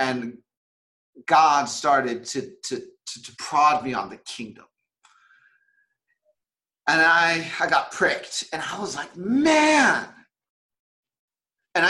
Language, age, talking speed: English, 40-59, 115 wpm